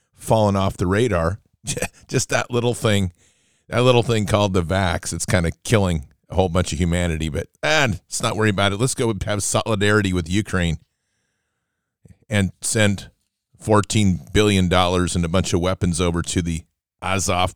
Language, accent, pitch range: English, American, 90-110 Hz